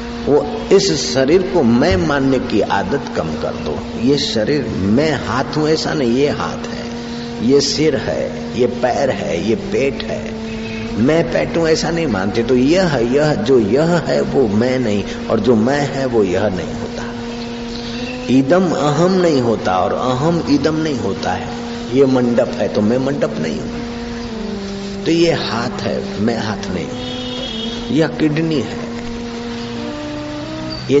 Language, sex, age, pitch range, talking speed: Hindi, male, 50-69, 120-170 Hz, 160 wpm